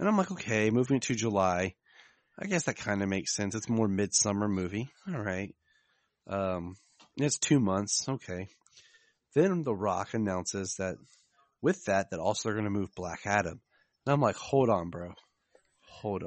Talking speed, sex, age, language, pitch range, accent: 175 wpm, male, 30-49, English, 100-135 Hz, American